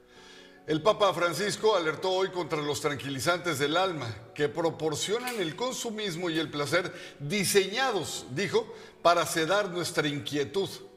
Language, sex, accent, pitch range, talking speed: Spanish, male, Mexican, 145-195 Hz, 125 wpm